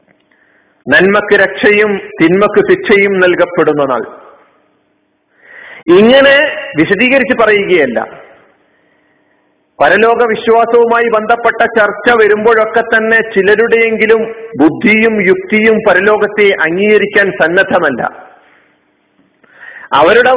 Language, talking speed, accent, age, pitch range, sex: Malayalam, 65 wpm, native, 50-69, 200-235 Hz, male